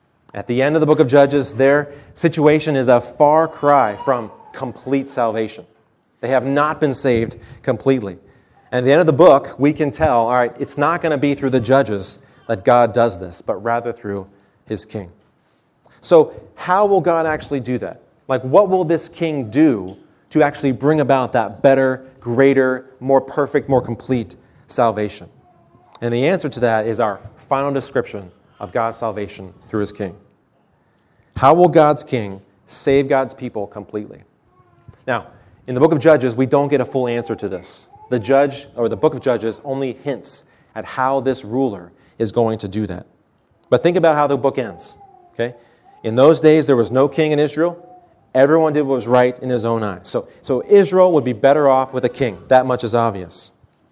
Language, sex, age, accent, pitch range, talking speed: English, male, 30-49, American, 115-145 Hz, 190 wpm